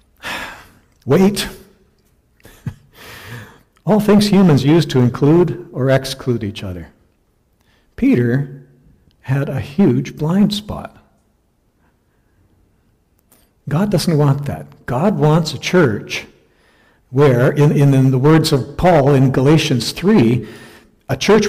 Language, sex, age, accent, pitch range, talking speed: English, male, 60-79, American, 130-175 Hz, 105 wpm